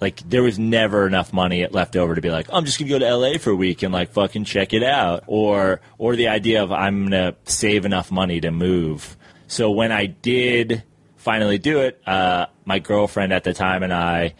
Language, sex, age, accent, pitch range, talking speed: English, male, 20-39, American, 85-100 Hz, 235 wpm